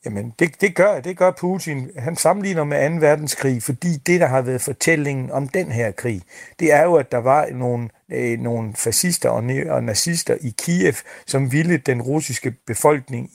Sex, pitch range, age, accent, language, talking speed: male, 125-150 Hz, 60-79, native, Danish, 195 wpm